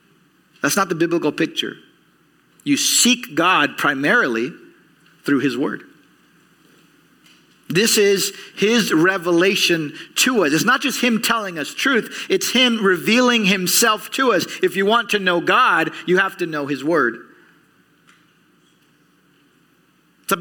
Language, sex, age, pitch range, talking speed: English, male, 40-59, 180-250 Hz, 130 wpm